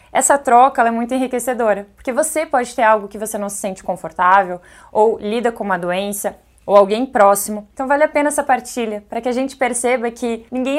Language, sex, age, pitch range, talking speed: Portuguese, female, 20-39, 205-245 Hz, 210 wpm